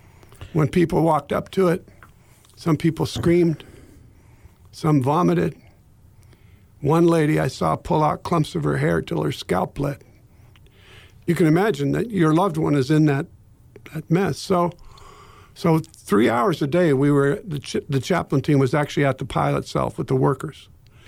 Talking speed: 170 wpm